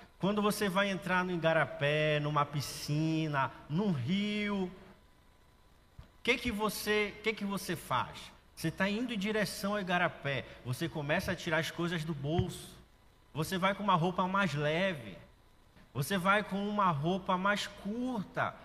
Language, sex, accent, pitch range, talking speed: Portuguese, male, Brazilian, 160-200 Hz, 150 wpm